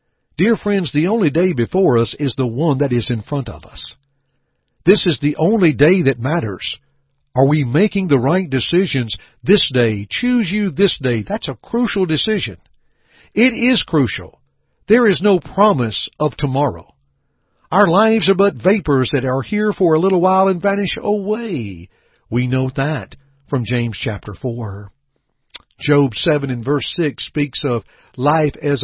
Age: 60-79